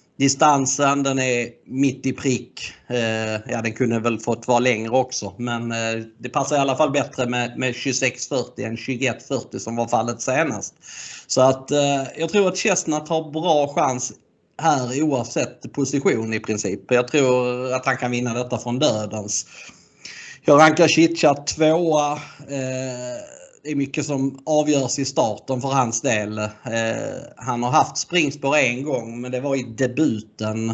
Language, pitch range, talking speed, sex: Swedish, 120-150 Hz, 160 wpm, male